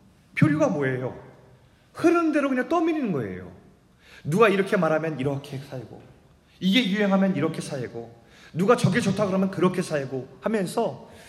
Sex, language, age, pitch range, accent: male, Korean, 30-49, 145-230 Hz, native